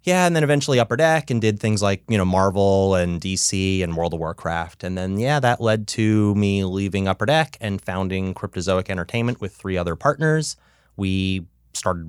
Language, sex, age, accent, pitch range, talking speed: English, male, 30-49, American, 90-115 Hz, 195 wpm